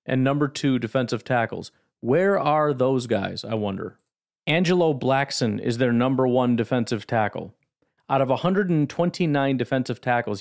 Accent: American